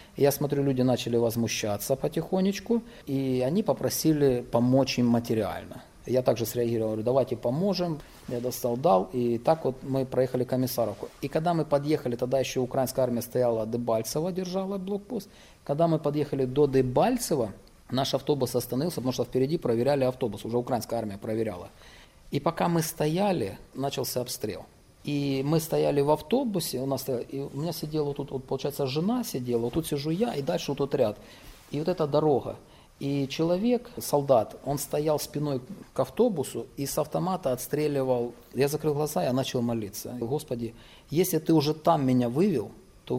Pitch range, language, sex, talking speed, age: 125-160 Hz, Russian, male, 165 wpm, 30-49